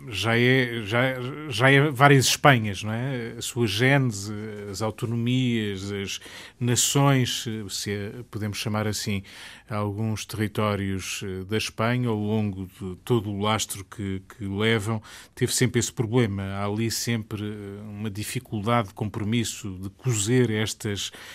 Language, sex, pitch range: Portuguese, male, 105-125 Hz